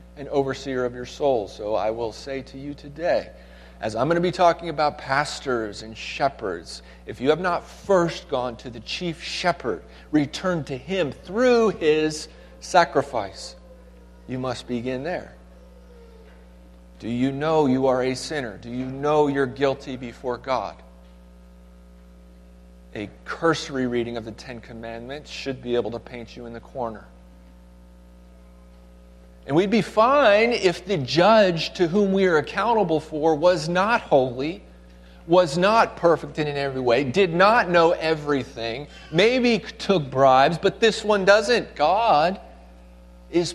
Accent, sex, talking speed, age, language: American, male, 145 wpm, 40-59, English